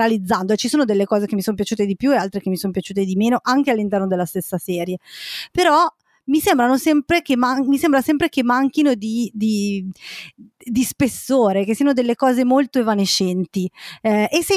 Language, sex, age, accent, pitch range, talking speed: Italian, female, 20-39, native, 200-260 Hz, 195 wpm